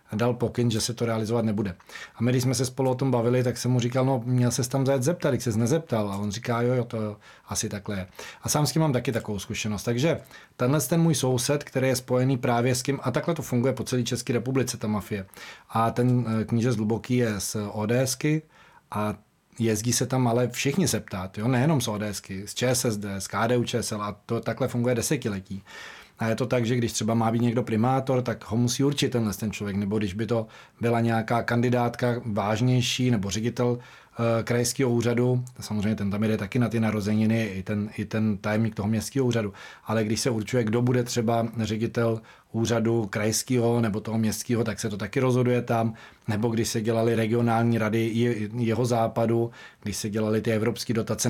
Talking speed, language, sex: 205 wpm, Czech, male